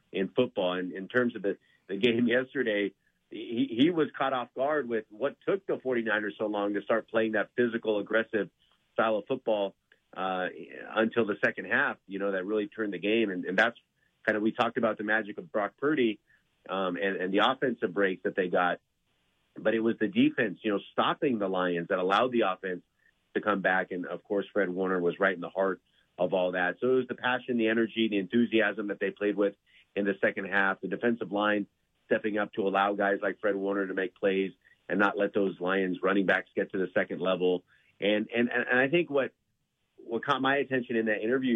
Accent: American